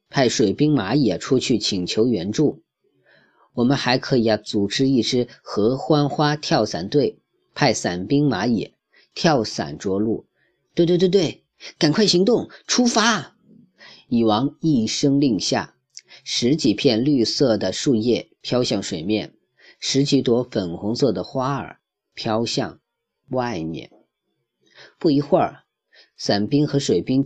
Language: Chinese